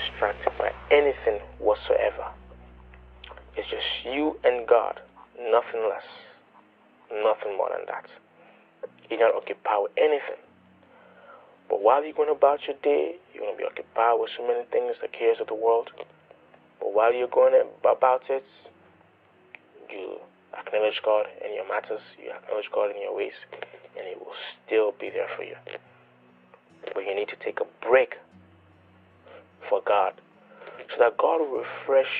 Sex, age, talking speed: male, 20-39, 150 wpm